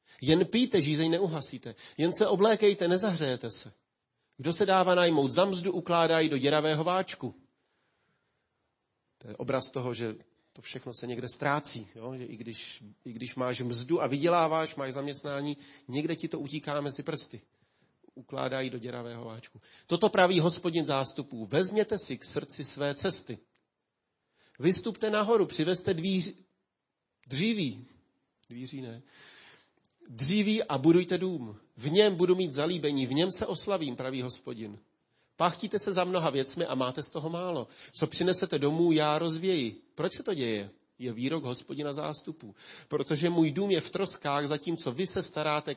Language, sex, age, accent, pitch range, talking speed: Czech, male, 40-59, native, 130-175 Hz, 150 wpm